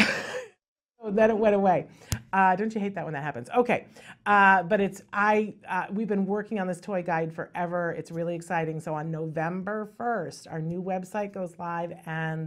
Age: 40-59